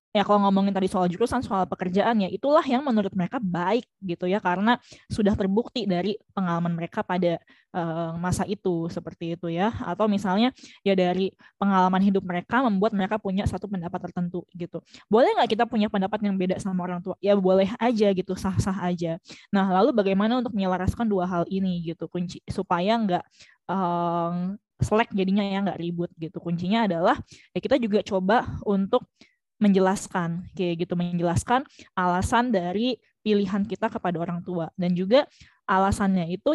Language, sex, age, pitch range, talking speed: Indonesian, female, 20-39, 180-215 Hz, 165 wpm